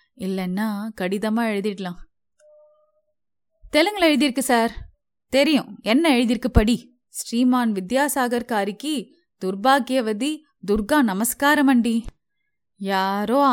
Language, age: Tamil, 20-39